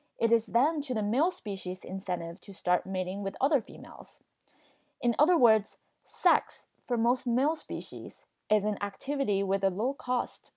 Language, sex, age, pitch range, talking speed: English, female, 20-39, 205-295 Hz, 165 wpm